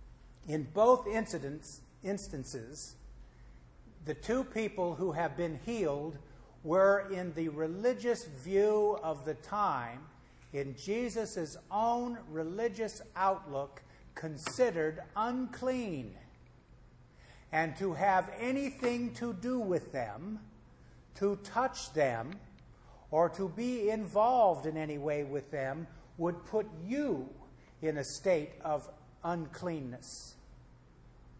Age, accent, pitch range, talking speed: 50-69, American, 145-195 Hz, 105 wpm